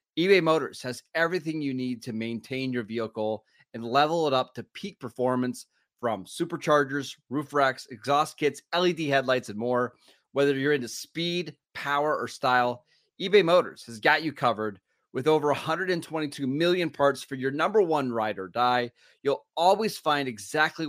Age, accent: 30-49, American